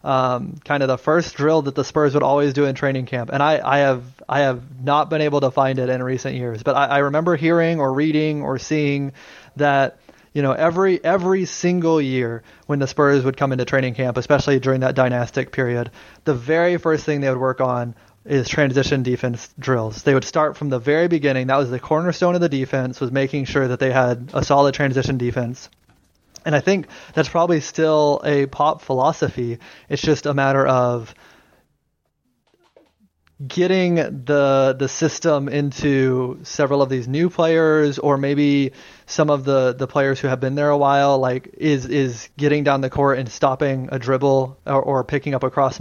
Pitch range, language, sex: 130-150 Hz, English, male